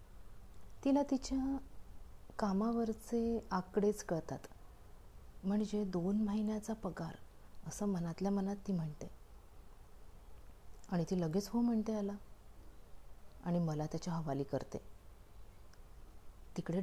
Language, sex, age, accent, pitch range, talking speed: Marathi, female, 30-49, native, 140-220 Hz, 95 wpm